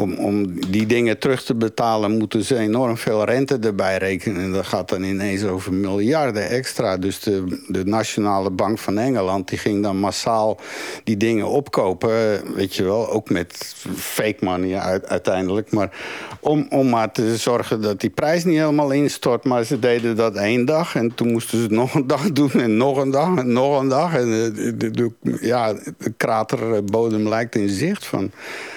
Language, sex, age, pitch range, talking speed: Dutch, male, 60-79, 110-145 Hz, 190 wpm